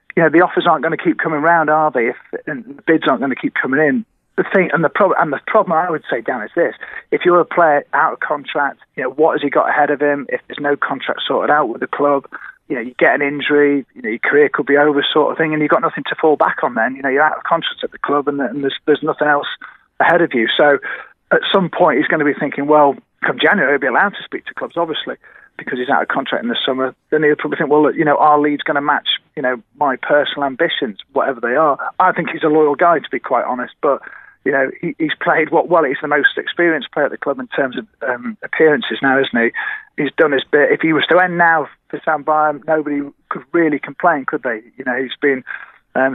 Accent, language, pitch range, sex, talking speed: British, English, 140-170 Hz, male, 270 wpm